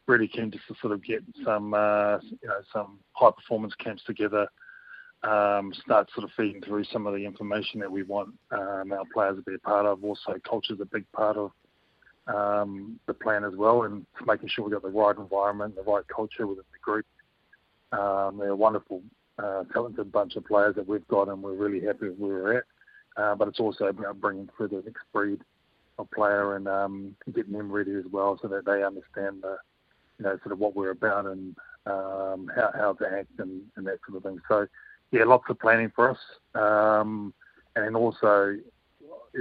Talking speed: 205 wpm